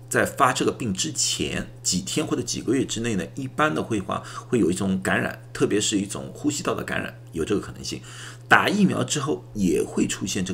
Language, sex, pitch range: Chinese, male, 90-120 Hz